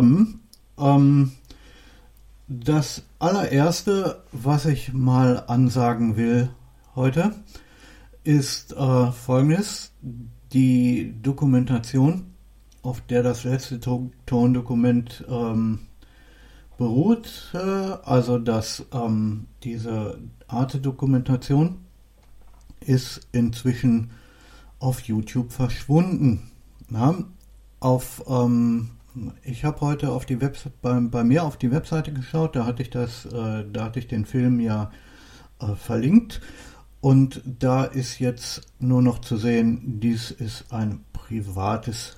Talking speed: 100 wpm